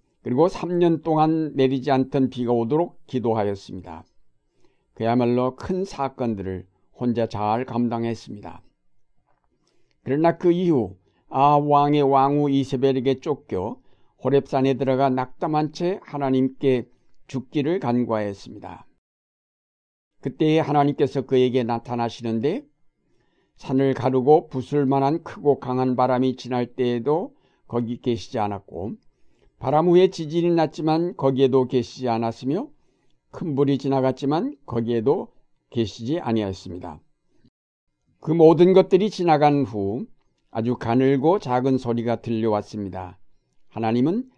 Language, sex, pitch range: Korean, male, 115-145 Hz